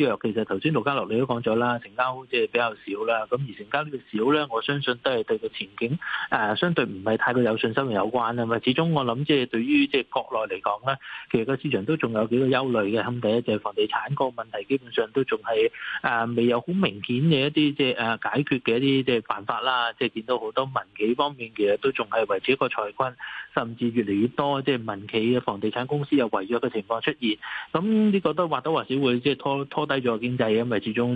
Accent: native